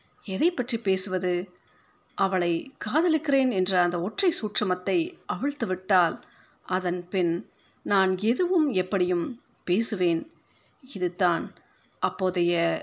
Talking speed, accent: 95 wpm, native